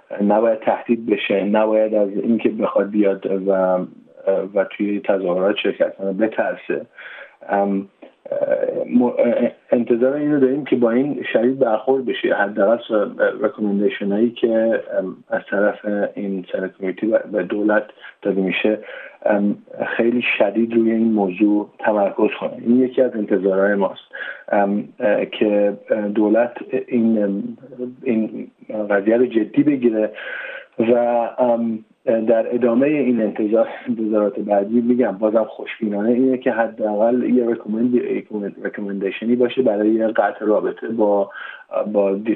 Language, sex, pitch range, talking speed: Persian, male, 100-120 Hz, 120 wpm